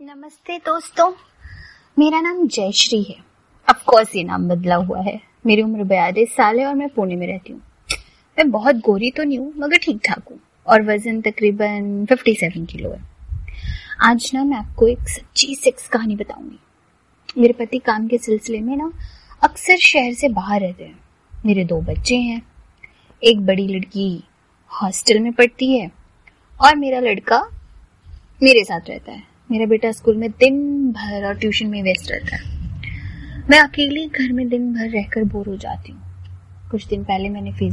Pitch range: 175-245 Hz